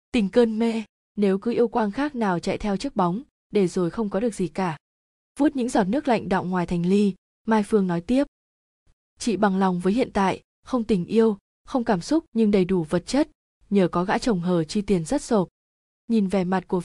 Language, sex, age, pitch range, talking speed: Vietnamese, female, 20-39, 185-230 Hz, 225 wpm